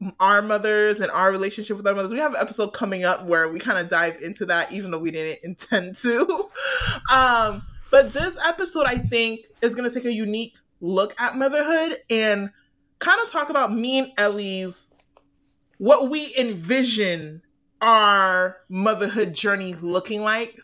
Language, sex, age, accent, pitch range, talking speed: English, male, 20-39, American, 185-240 Hz, 170 wpm